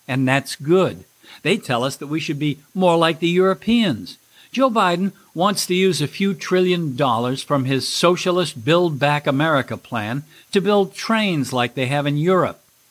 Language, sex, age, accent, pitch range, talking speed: English, male, 50-69, American, 140-180 Hz, 175 wpm